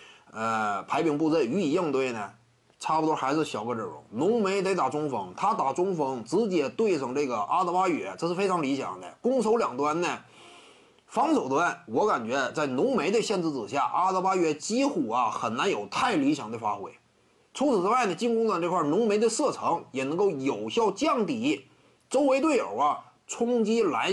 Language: Chinese